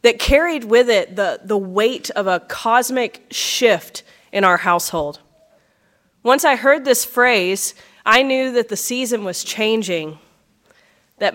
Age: 20-39